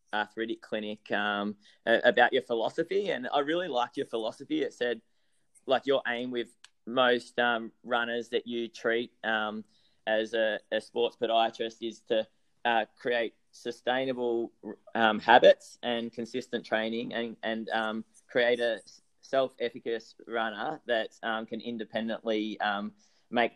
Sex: male